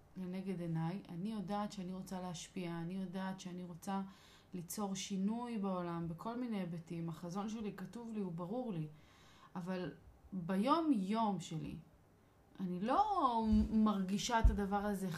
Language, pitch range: Hebrew, 175-215 Hz